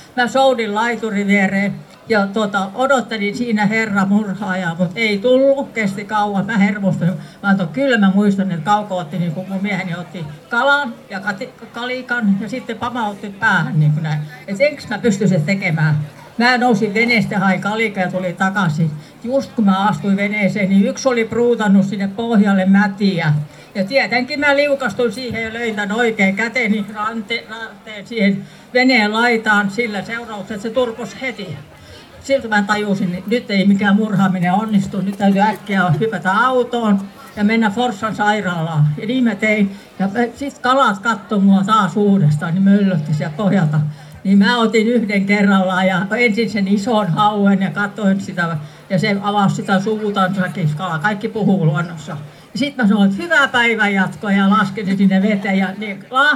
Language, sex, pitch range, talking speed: Finnish, female, 190-230 Hz, 155 wpm